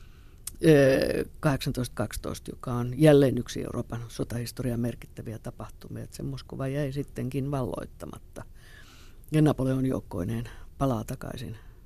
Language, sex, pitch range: Finnish, female, 115-145 Hz